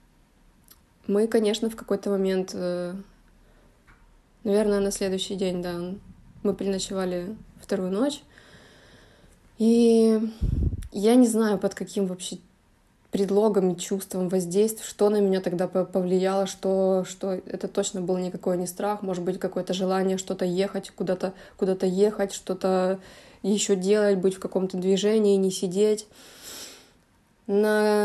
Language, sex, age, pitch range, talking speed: Ukrainian, female, 20-39, 185-205 Hz, 120 wpm